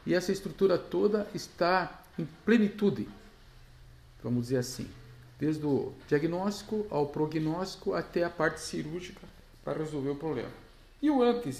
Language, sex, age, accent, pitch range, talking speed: Portuguese, male, 50-69, Brazilian, 125-195 Hz, 135 wpm